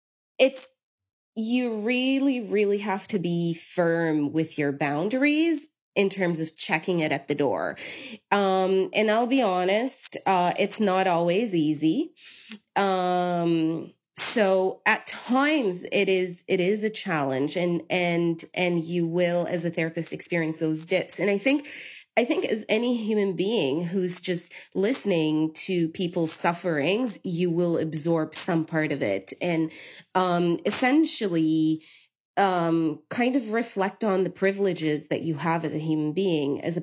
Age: 20-39